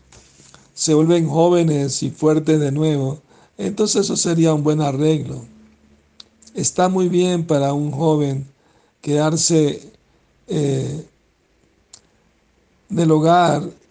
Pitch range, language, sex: 140-160 Hz, Spanish, male